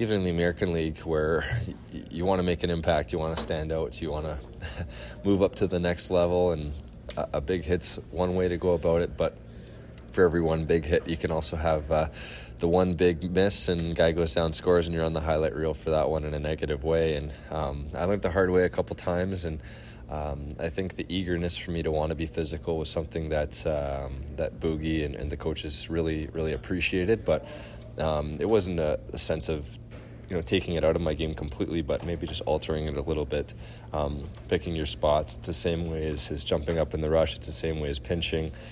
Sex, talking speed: male, 235 wpm